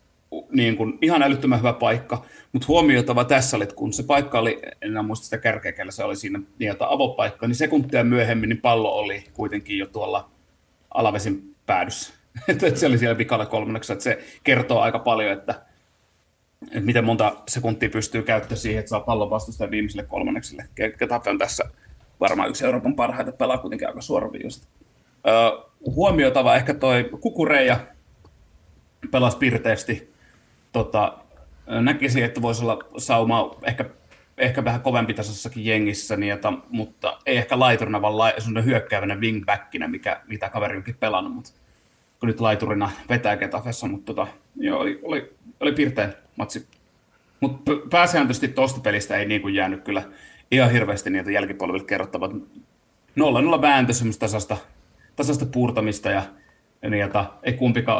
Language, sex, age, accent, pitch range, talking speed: Finnish, male, 30-49, native, 105-125 Hz, 145 wpm